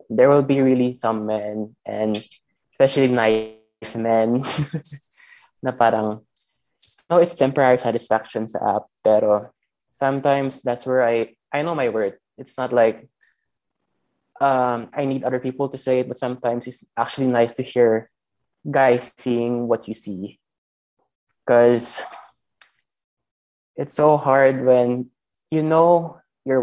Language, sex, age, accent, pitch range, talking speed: Filipino, male, 20-39, native, 110-130 Hz, 130 wpm